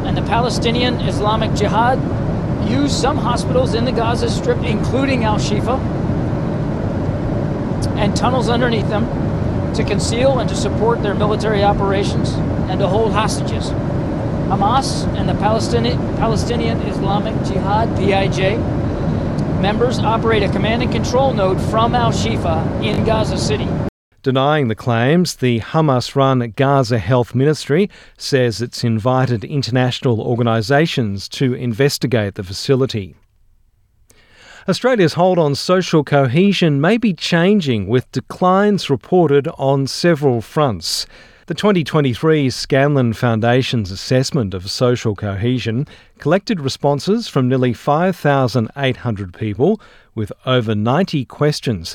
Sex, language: male, English